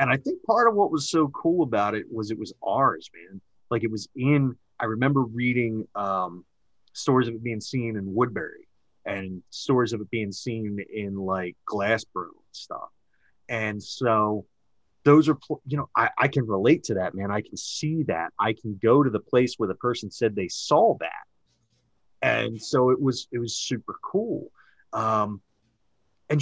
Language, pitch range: English, 100-130 Hz